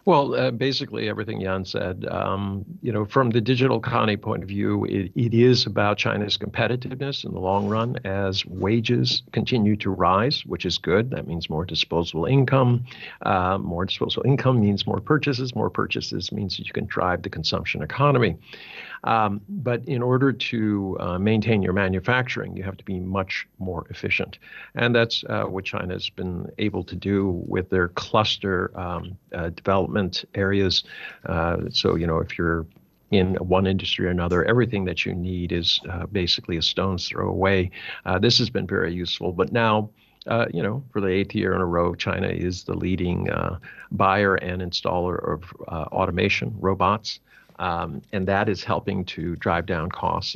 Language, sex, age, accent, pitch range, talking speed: English, male, 50-69, American, 90-110 Hz, 180 wpm